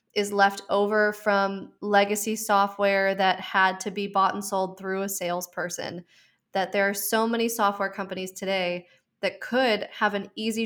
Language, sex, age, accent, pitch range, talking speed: English, female, 20-39, American, 190-215 Hz, 165 wpm